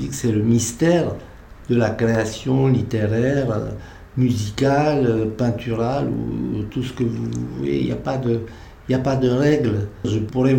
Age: 60-79